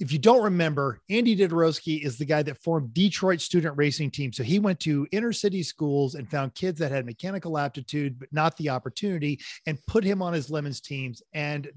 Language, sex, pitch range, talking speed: English, male, 145-190 Hz, 210 wpm